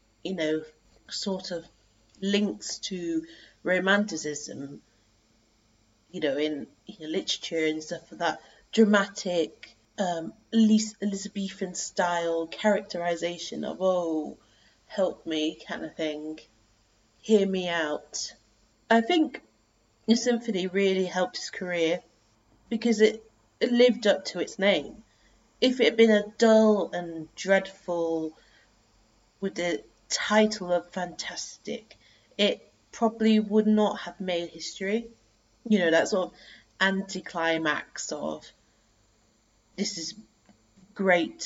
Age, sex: 30-49, female